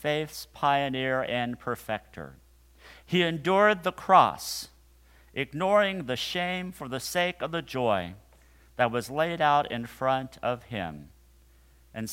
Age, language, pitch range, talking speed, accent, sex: 50-69, English, 90-150 Hz, 130 wpm, American, male